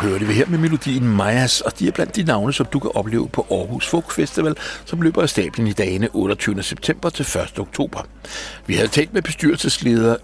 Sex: male